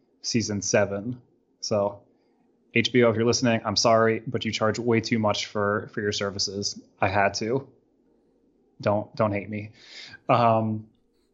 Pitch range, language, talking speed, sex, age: 110-125 Hz, English, 145 wpm, male, 20-39